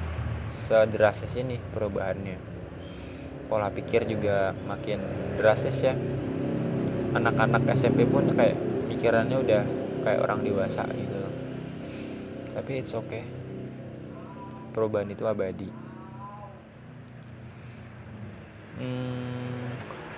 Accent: native